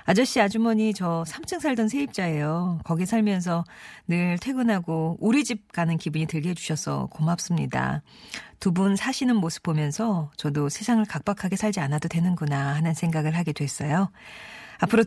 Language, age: Korean, 40-59